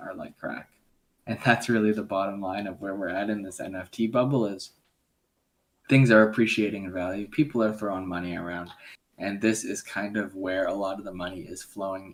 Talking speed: 205 wpm